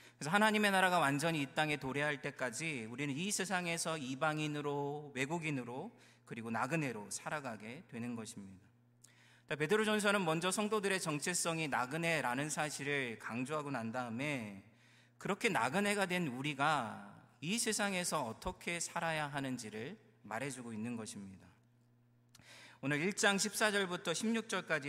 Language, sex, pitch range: Korean, male, 120-170 Hz